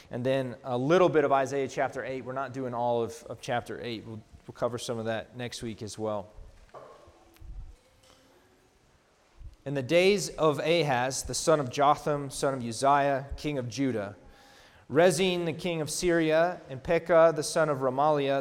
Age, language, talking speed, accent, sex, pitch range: 30-49, English, 175 wpm, American, male, 130-170 Hz